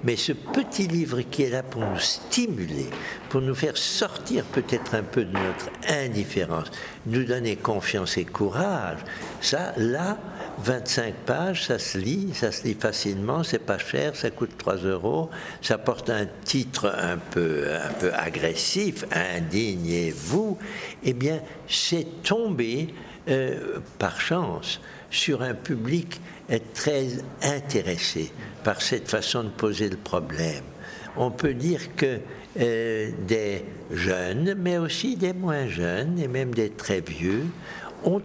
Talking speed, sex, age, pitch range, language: 140 wpm, male, 60-79, 110-165 Hz, French